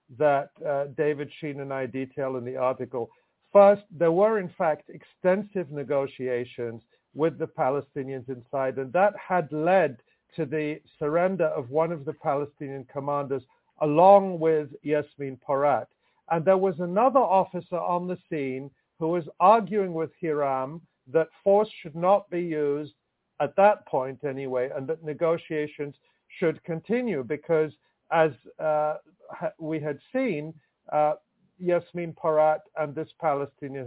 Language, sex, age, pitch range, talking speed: English, male, 50-69, 140-180 Hz, 140 wpm